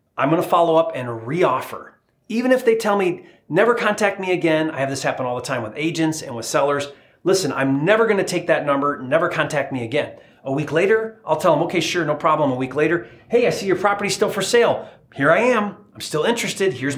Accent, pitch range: American, 135-200 Hz